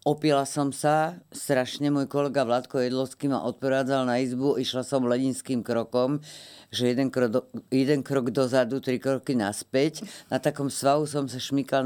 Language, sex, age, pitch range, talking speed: Slovak, female, 50-69, 125-145 Hz, 160 wpm